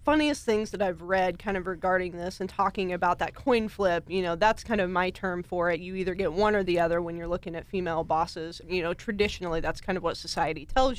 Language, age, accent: English, 20-39, American